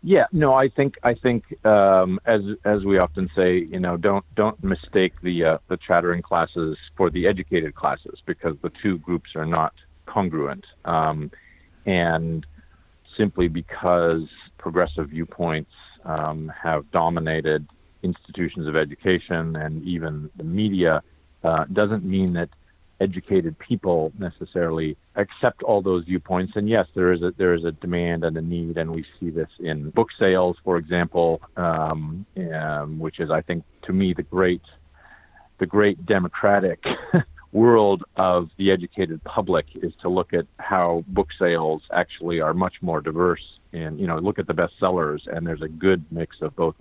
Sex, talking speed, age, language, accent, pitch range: male, 160 wpm, 50-69, English, American, 80-95 Hz